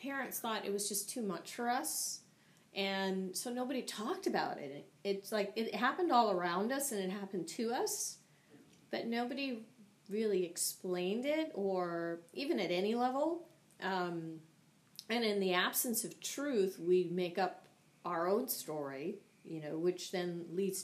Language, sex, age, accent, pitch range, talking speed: English, female, 30-49, American, 170-200 Hz, 160 wpm